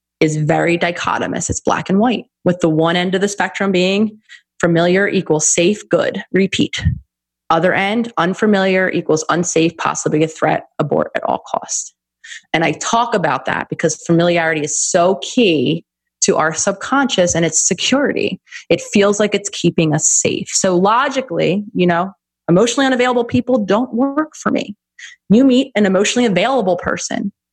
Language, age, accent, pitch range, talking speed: English, 20-39, American, 170-225 Hz, 155 wpm